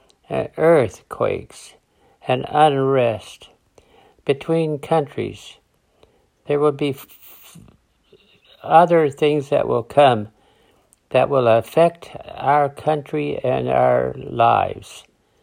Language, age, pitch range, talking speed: English, 60-79, 120-150 Hz, 80 wpm